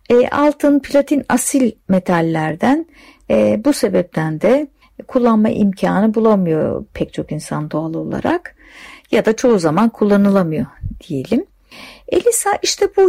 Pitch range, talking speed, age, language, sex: 180-290 Hz, 110 wpm, 60-79, Turkish, female